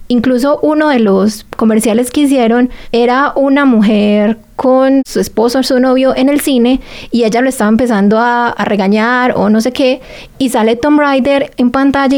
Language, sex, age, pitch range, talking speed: Spanish, female, 20-39, 220-260 Hz, 180 wpm